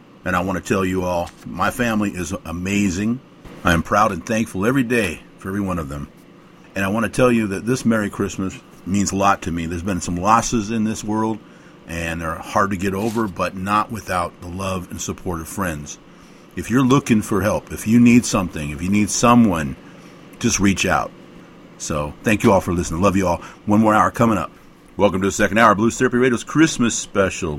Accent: American